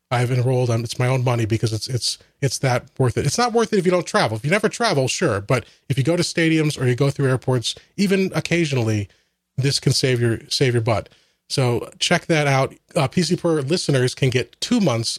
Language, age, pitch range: English, 30-49, 120-150 Hz